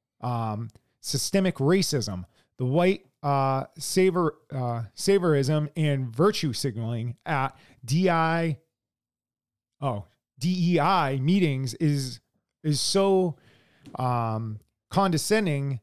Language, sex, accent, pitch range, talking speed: English, male, American, 135-180 Hz, 85 wpm